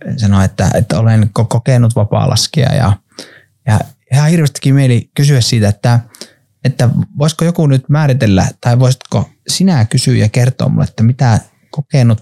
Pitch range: 110-140 Hz